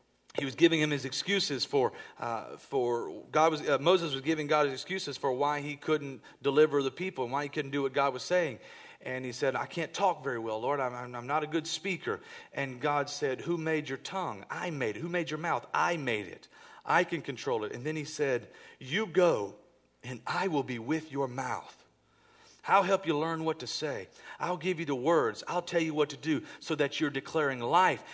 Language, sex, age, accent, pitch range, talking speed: English, male, 40-59, American, 125-170 Hz, 225 wpm